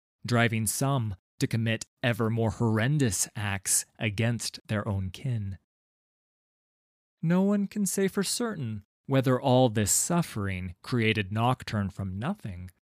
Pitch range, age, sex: 100-130 Hz, 20-39, male